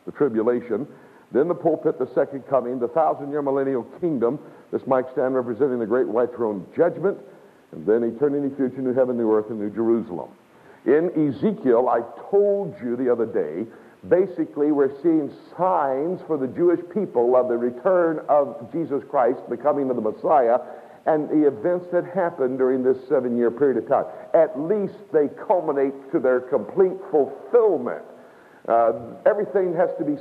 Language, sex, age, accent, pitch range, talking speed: English, male, 60-79, American, 130-185 Hz, 165 wpm